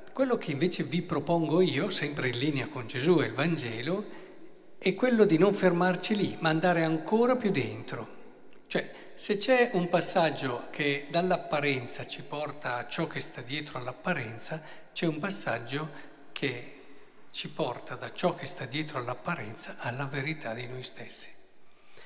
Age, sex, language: 50-69, male, Italian